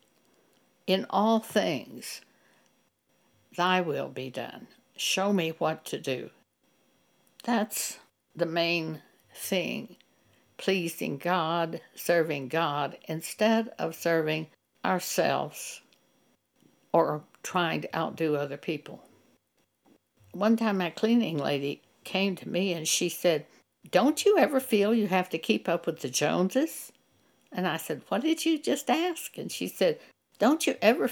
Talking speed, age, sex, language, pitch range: 130 wpm, 60-79, female, English, 165-230 Hz